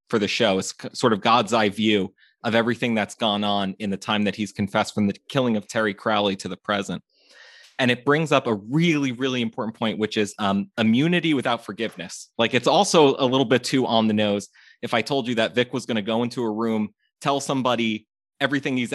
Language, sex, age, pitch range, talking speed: English, male, 20-39, 105-130 Hz, 225 wpm